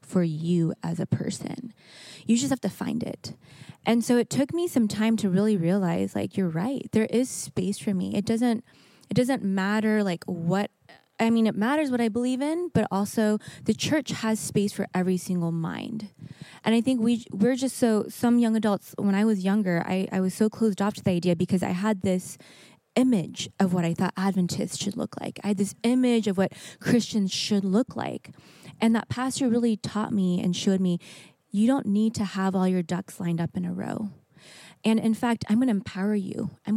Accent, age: American, 20-39